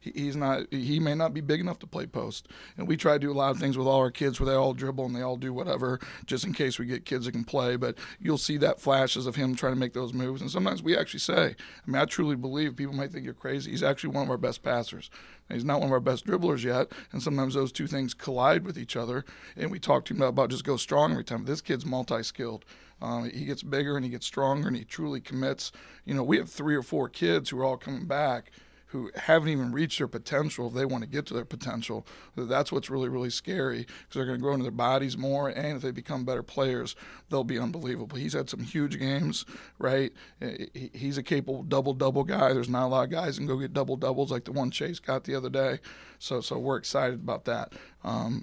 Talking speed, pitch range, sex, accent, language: 250 wpm, 130-145 Hz, male, American, English